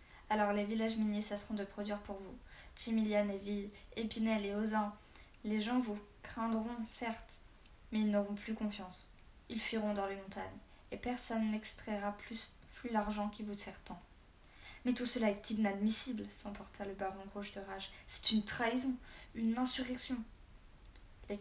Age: 10-29